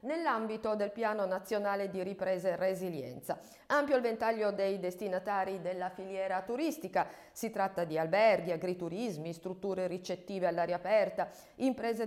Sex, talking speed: female, 130 wpm